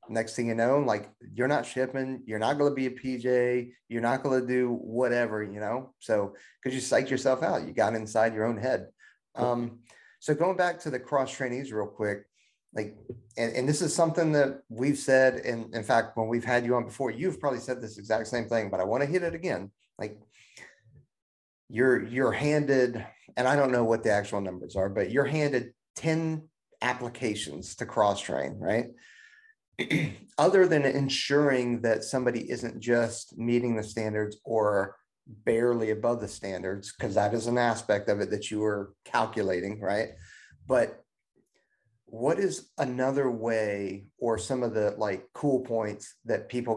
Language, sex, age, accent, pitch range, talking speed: English, male, 30-49, American, 110-130 Hz, 180 wpm